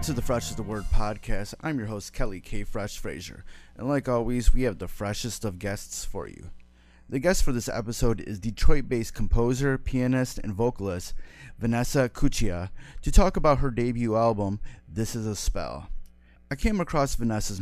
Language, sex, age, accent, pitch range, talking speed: English, male, 30-49, American, 95-120 Hz, 180 wpm